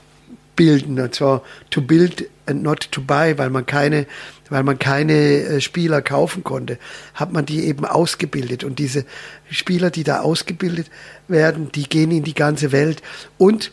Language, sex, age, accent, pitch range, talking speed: German, male, 50-69, German, 140-160 Hz, 160 wpm